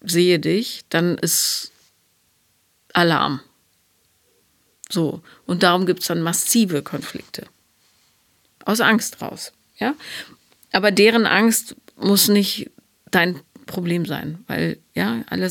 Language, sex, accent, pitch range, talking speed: German, female, German, 175-215 Hz, 110 wpm